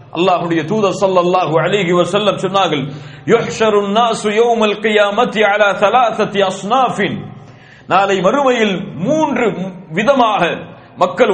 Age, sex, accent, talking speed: 40-59, male, Indian, 105 wpm